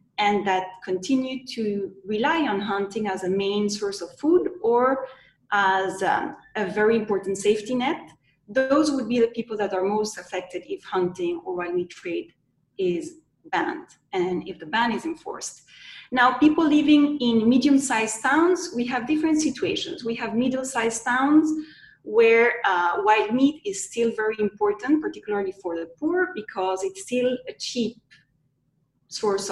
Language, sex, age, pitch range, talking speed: English, female, 30-49, 195-265 Hz, 160 wpm